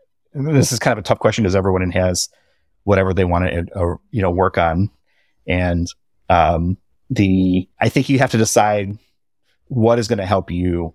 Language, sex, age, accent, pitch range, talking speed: English, male, 30-49, American, 90-110 Hz, 190 wpm